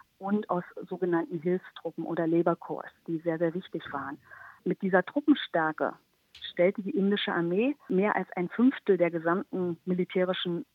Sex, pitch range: female, 170-195 Hz